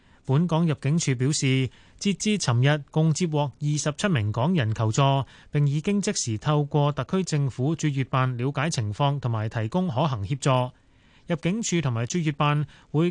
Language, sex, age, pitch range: Chinese, male, 30-49, 130-170 Hz